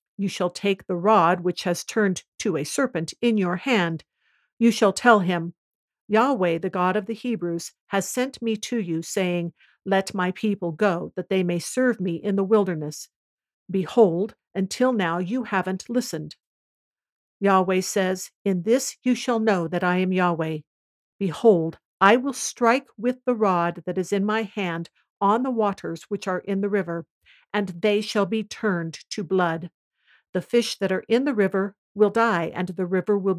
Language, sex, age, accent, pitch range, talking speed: English, female, 50-69, American, 180-220 Hz, 180 wpm